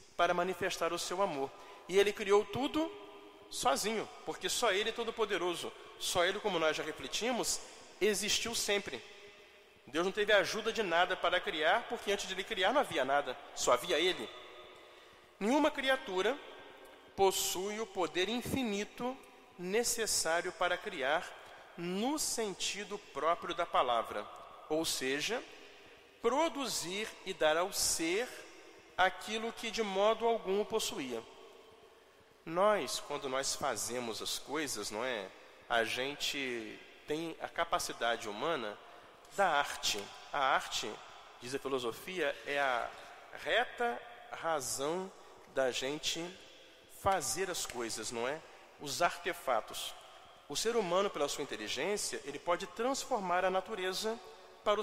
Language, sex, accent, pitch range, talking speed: Portuguese, male, Brazilian, 165-220 Hz, 125 wpm